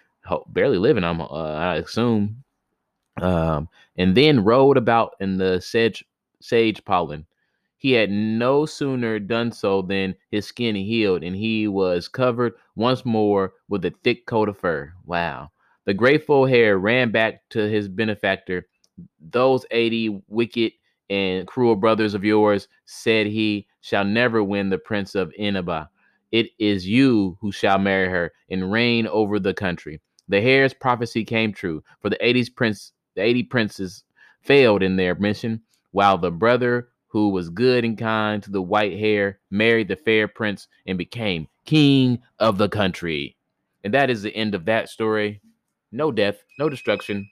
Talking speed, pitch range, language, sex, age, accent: 155 wpm, 95-115 Hz, English, male, 20-39, American